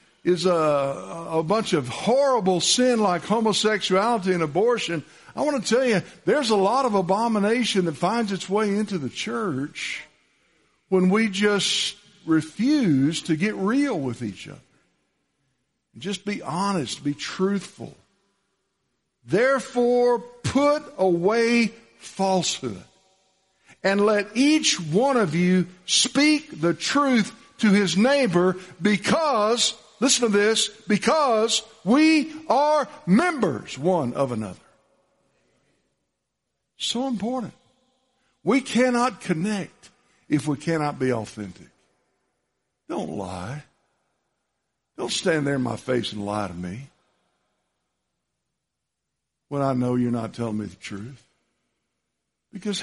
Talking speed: 115 wpm